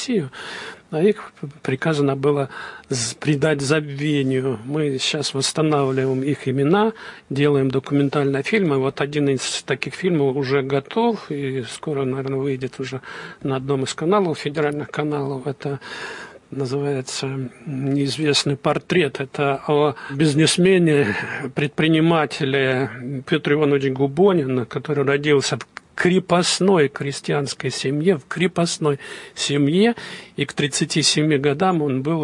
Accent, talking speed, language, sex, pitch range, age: native, 110 wpm, Russian, male, 135-160 Hz, 50-69